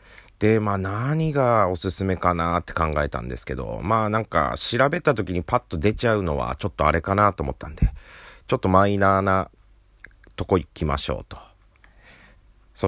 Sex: male